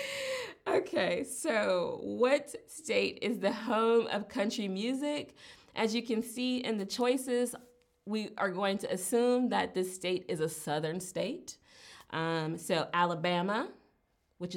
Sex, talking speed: female, 135 wpm